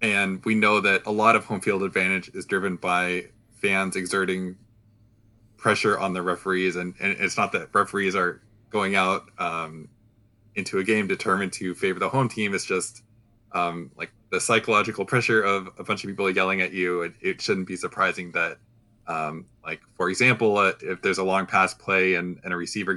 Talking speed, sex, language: 195 wpm, male, English